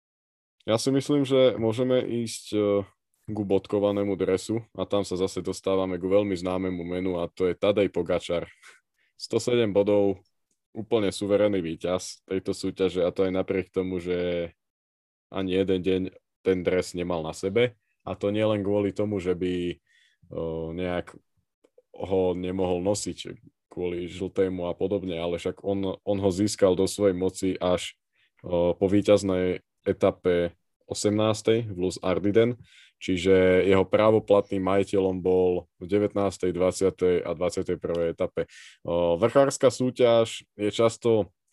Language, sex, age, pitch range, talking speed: Slovak, male, 20-39, 90-105 Hz, 130 wpm